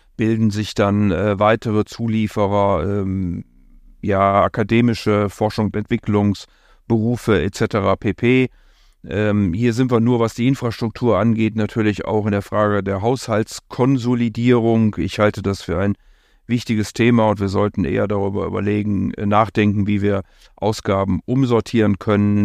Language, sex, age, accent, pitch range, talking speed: German, male, 40-59, German, 100-115 Hz, 130 wpm